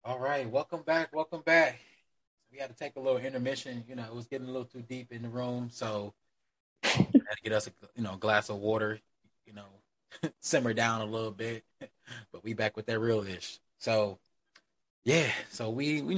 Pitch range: 110-135 Hz